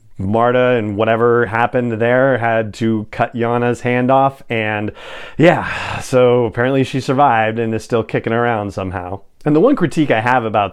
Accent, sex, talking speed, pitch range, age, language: American, male, 170 wpm, 110-125 Hz, 30-49, English